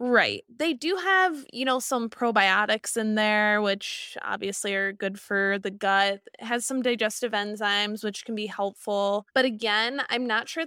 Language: English